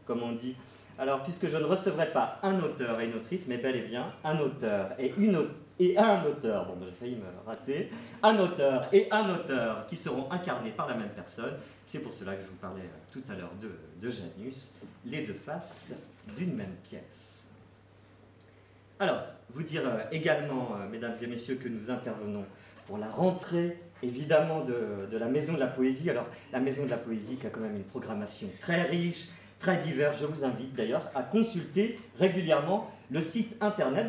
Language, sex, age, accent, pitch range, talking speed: French, male, 40-59, French, 115-185 Hz, 195 wpm